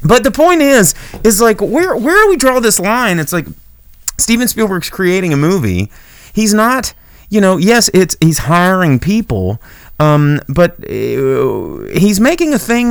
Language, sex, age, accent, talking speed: English, male, 30-49, American, 165 wpm